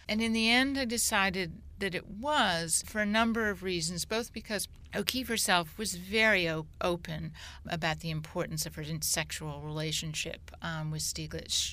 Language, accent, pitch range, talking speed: English, American, 160-210 Hz, 160 wpm